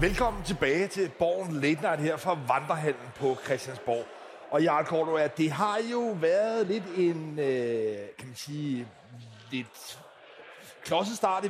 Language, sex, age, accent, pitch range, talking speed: Danish, male, 30-49, native, 150-190 Hz, 150 wpm